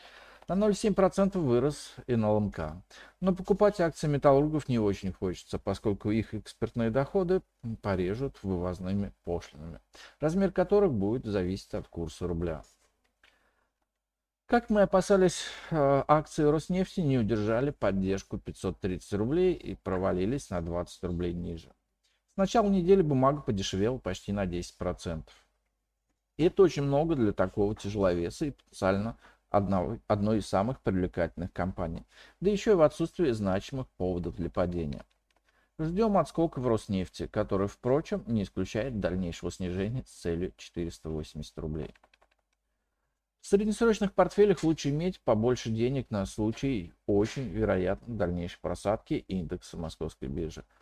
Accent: native